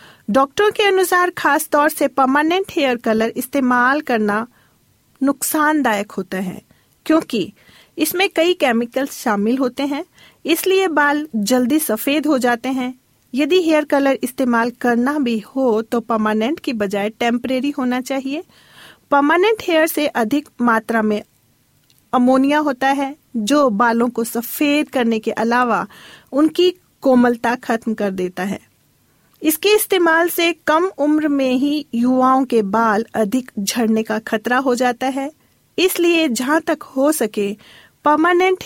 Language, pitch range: Hindi, 235-300 Hz